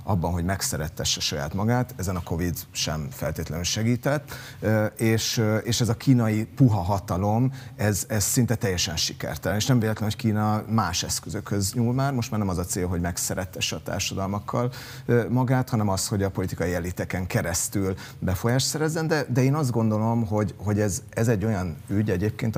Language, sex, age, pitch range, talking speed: Hungarian, male, 30-49, 95-120 Hz, 160 wpm